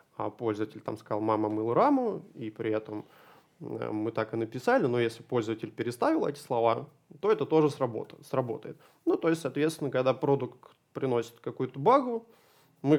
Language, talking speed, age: Russian, 155 wpm, 20-39